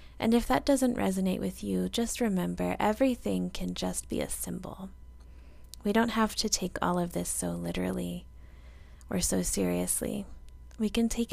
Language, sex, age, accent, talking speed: English, female, 20-39, American, 165 wpm